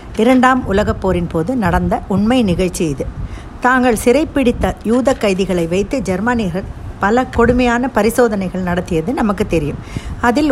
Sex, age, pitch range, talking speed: female, 50-69, 185-245 Hz, 115 wpm